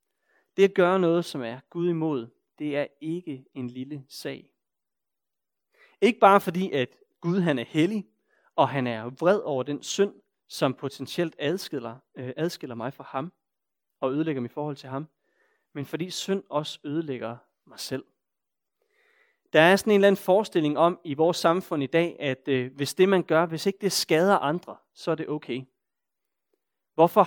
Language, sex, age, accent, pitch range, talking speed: Danish, male, 30-49, native, 135-180 Hz, 165 wpm